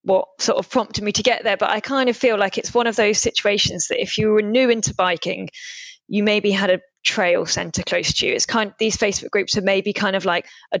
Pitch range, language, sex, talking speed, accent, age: 195-230 Hz, English, female, 260 wpm, British, 20-39